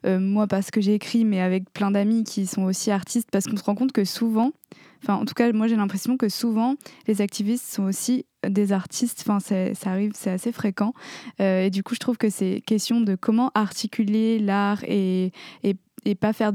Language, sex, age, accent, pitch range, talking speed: French, female, 20-39, French, 195-215 Hz, 220 wpm